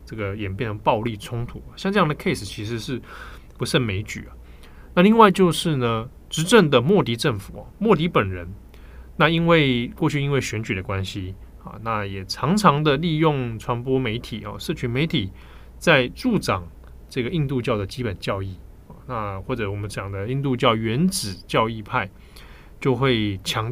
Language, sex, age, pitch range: Chinese, male, 20-39, 95-145 Hz